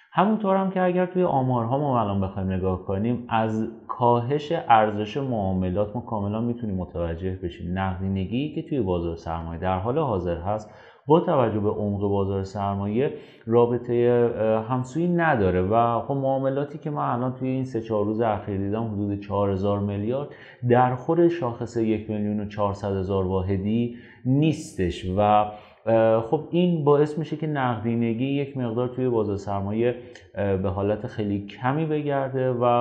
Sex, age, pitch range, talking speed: male, 30-49, 100-125 Hz, 145 wpm